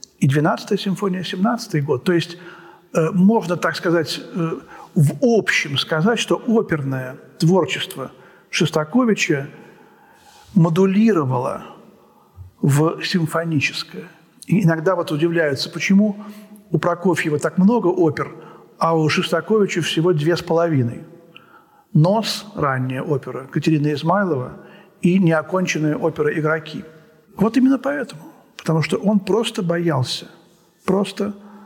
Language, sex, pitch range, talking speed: Russian, male, 150-195 Hz, 110 wpm